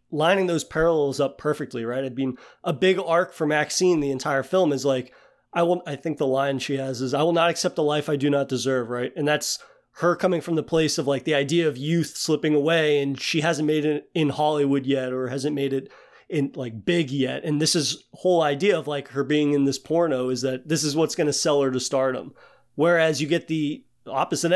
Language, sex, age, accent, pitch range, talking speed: English, male, 30-49, American, 135-160 Hz, 240 wpm